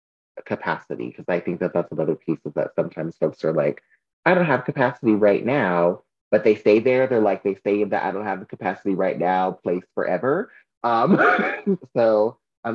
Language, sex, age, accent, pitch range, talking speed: English, male, 30-49, American, 95-120 Hz, 195 wpm